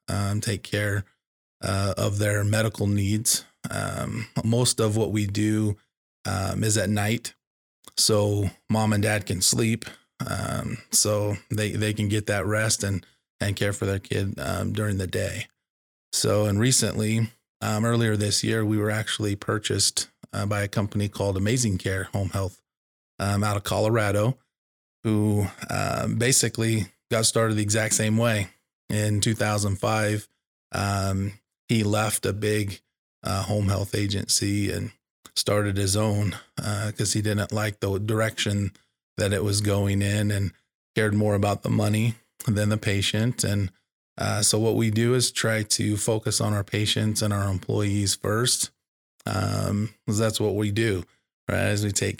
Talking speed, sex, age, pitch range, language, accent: 160 wpm, male, 20-39, 100-110 Hz, English, American